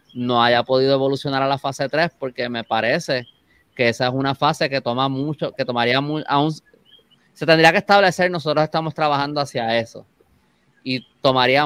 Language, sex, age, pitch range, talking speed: Spanish, male, 20-39, 125-155 Hz, 175 wpm